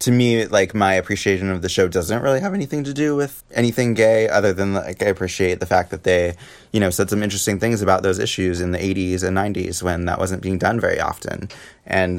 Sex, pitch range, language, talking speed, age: male, 90-110 Hz, English, 235 wpm, 20-39